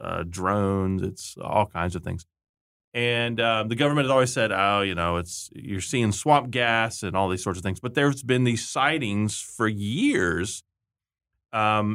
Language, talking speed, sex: English, 180 wpm, male